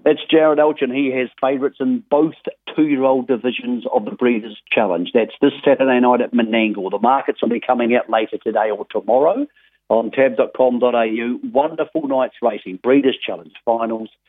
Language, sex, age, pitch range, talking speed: English, male, 50-69, 110-145 Hz, 165 wpm